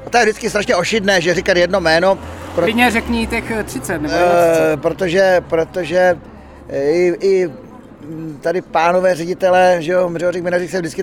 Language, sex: Czech, male